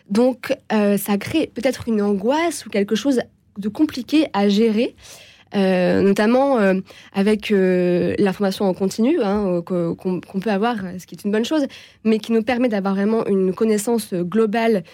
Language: French